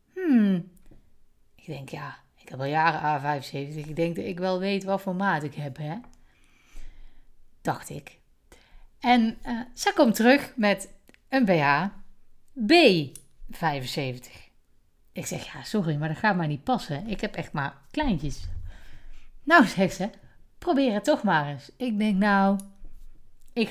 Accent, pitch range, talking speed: Dutch, 155-215 Hz, 150 wpm